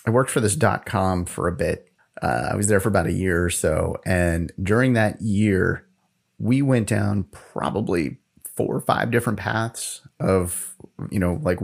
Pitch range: 90-125 Hz